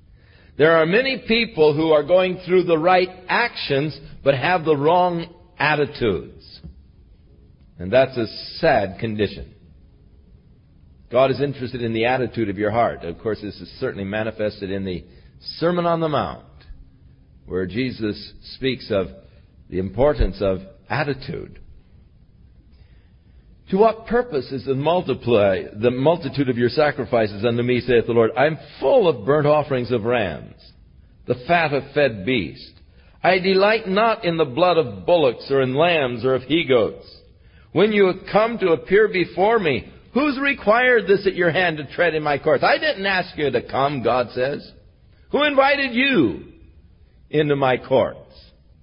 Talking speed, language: 150 wpm, English